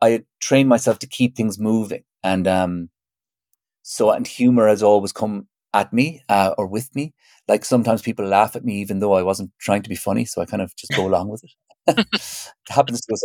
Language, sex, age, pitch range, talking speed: English, male, 30-49, 100-130 Hz, 215 wpm